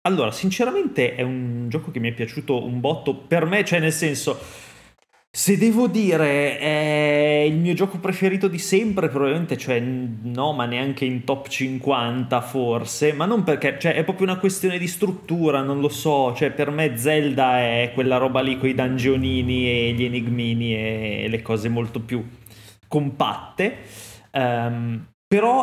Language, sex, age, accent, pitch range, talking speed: Italian, male, 20-39, native, 125-165 Hz, 160 wpm